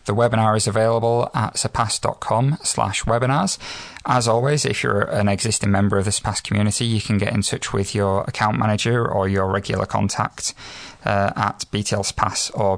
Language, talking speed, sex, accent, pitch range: English, 175 wpm, male, British, 100-115 Hz